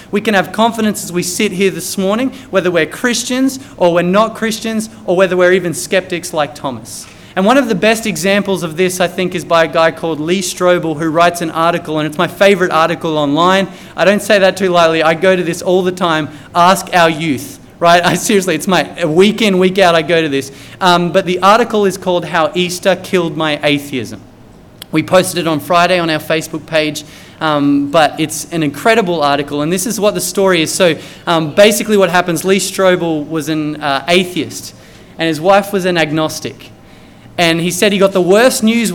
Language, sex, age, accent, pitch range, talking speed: English, male, 30-49, Australian, 155-195 Hz, 215 wpm